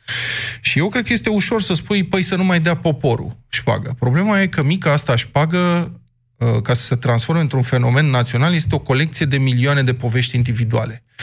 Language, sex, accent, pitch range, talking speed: Romanian, male, native, 120-160 Hz, 190 wpm